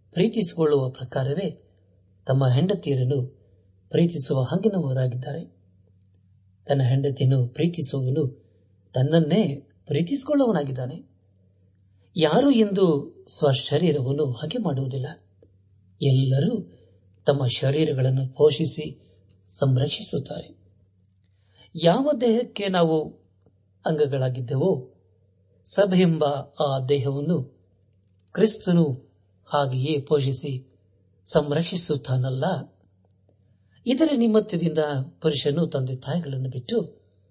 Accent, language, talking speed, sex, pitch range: native, Kannada, 60 wpm, male, 100-155 Hz